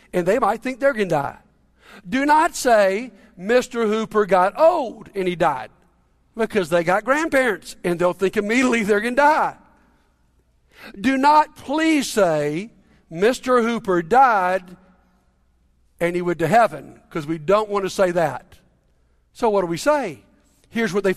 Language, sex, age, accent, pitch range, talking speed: English, male, 60-79, American, 195-265 Hz, 160 wpm